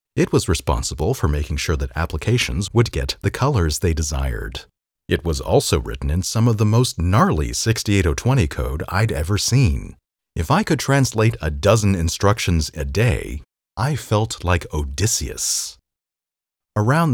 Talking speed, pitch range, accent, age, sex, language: 150 wpm, 80-115 Hz, American, 40-59, male, English